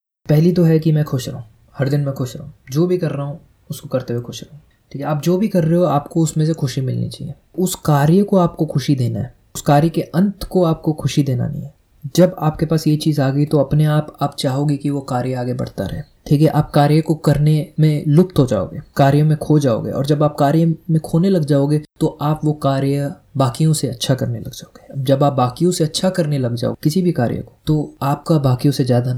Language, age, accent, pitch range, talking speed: Hindi, 20-39, native, 135-155 Hz, 245 wpm